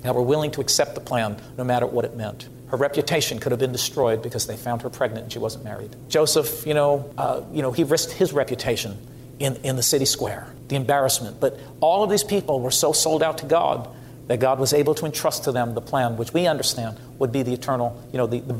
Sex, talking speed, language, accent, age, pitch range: male, 245 wpm, English, American, 50-69, 125-145 Hz